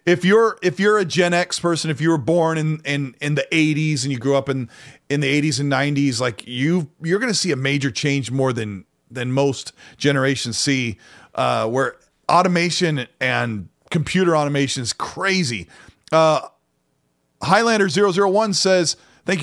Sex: male